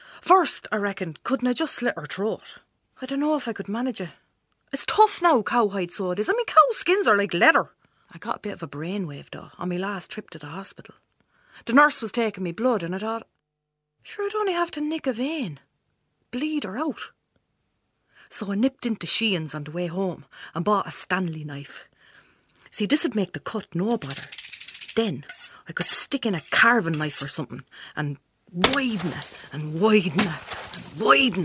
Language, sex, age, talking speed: English, female, 30-49, 195 wpm